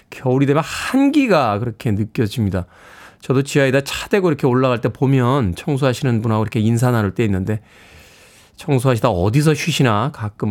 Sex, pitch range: male, 115-185 Hz